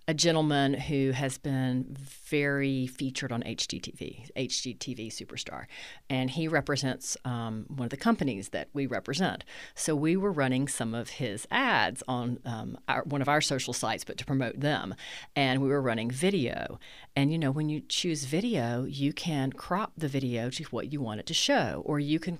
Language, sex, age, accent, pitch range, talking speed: English, female, 40-59, American, 130-200 Hz, 185 wpm